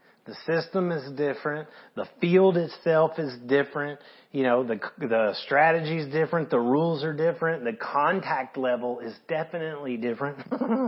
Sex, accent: male, American